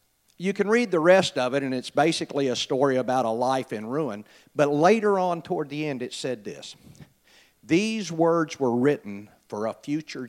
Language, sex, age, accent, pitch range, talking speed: English, male, 50-69, American, 125-165 Hz, 190 wpm